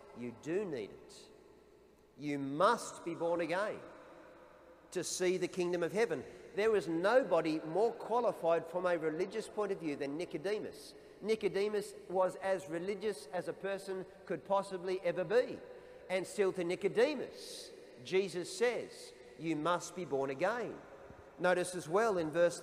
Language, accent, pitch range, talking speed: English, Australian, 145-190 Hz, 145 wpm